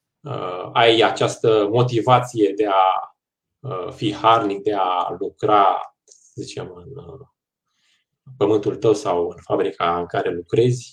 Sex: male